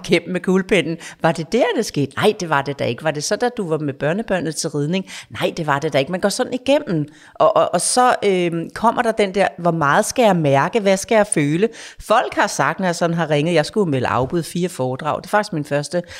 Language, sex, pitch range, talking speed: Danish, female, 155-210 Hz, 265 wpm